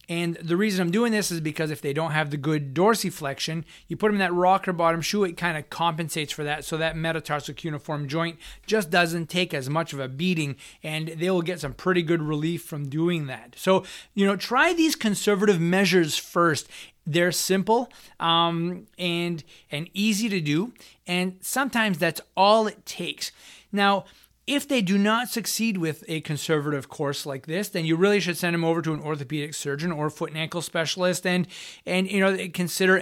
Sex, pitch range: male, 150-185 Hz